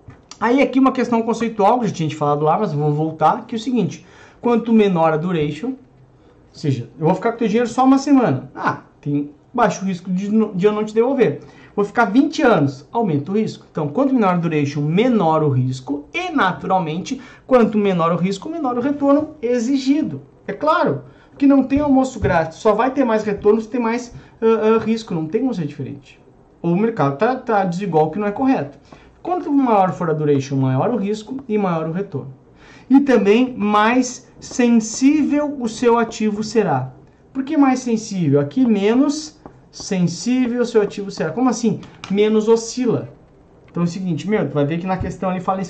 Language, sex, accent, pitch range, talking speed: Portuguese, male, Brazilian, 160-235 Hz, 195 wpm